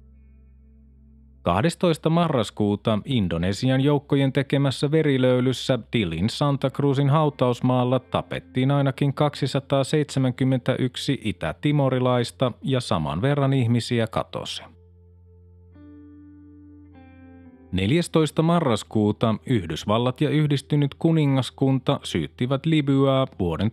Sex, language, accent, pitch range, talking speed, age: male, Finnish, native, 100-140 Hz, 70 wpm, 30-49